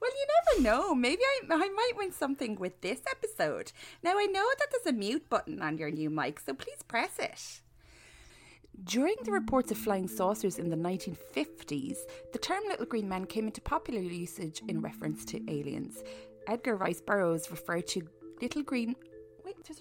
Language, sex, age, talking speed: English, female, 20-39, 180 wpm